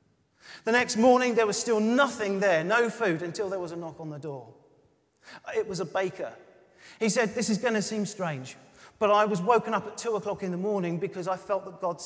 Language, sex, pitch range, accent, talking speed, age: English, male, 155-220 Hz, British, 230 wpm, 40-59